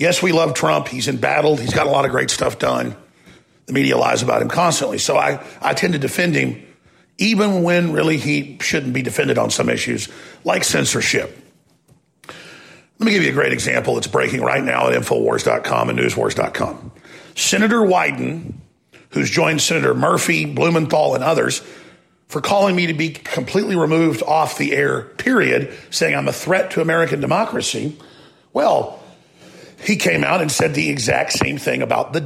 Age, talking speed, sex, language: 50-69, 175 wpm, male, English